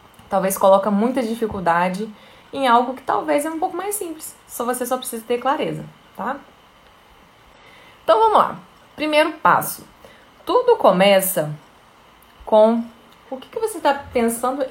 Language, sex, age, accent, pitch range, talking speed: Portuguese, female, 20-39, Brazilian, 190-255 Hz, 140 wpm